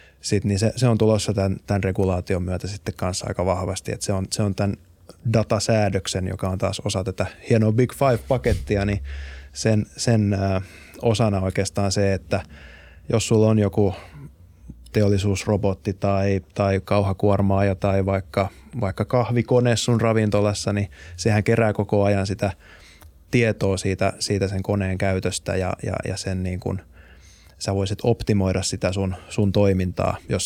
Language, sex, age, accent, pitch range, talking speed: Finnish, male, 20-39, native, 95-110 Hz, 150 wpm